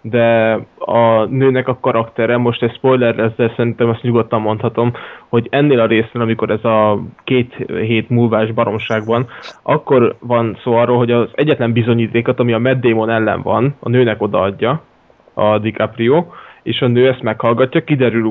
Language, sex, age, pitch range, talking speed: Hungarian, male, 20-39, 110-130 Hz, 165 wpm